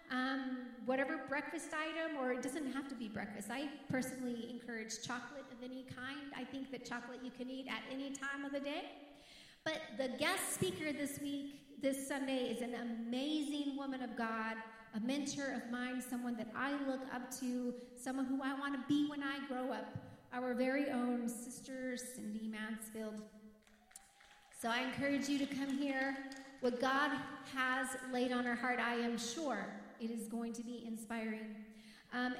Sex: female